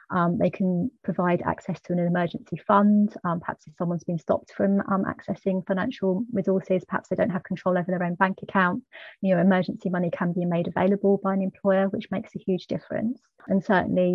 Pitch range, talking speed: 175-195 Hz, 205 wpm